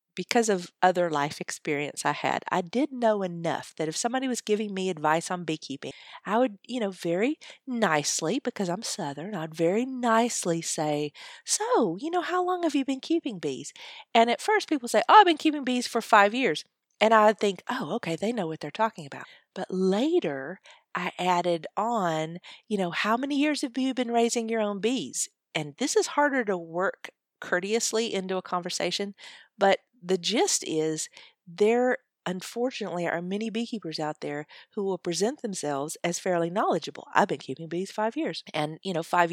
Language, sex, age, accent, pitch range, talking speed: English, female, 40-59, American, 170-235 Hz, 185 wpm